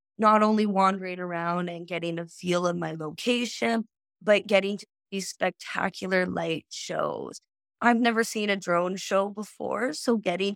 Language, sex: English, female